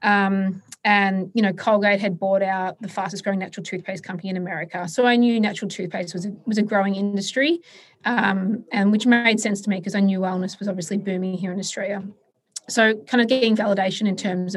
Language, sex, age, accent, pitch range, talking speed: English, female, 20-39, Australian, 180-210 Hz, 205 wpm